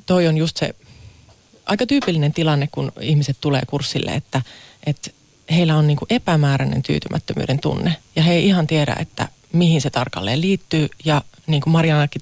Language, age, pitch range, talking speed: Finnish, 30-49, 130-165 Hz, 160 wpm